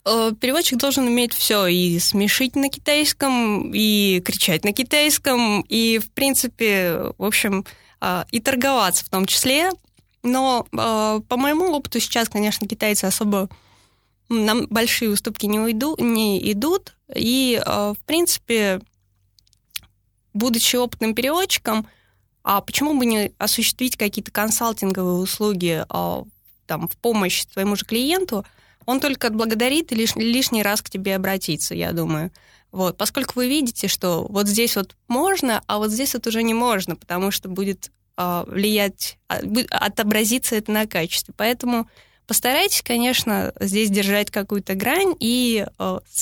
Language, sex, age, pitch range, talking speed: Russian, female, 20-39, 195-245 Hz, 130 wpm